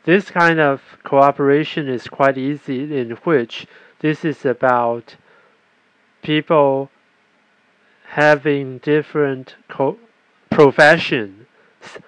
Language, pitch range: Chinese, 130-165 Hz